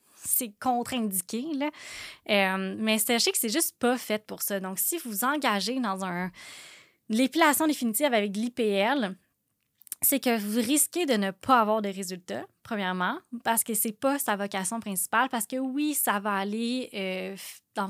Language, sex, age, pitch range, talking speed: French, female, 20-39, 205-265 Hz, 160 wpm